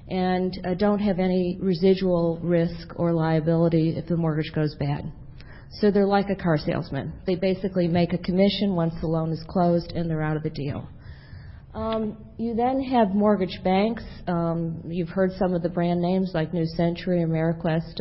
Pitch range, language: 165-185 Hz, English